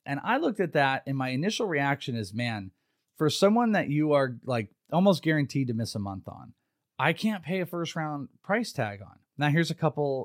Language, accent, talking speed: English, American, 215 wpm